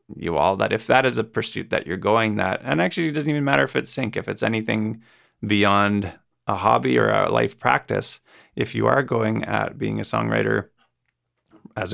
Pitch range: 100-120 Hz